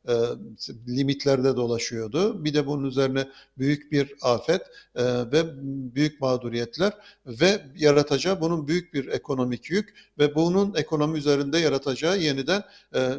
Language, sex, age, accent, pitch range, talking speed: Turkish, male, 50-69, native, 130-155 Hz, 125 wpm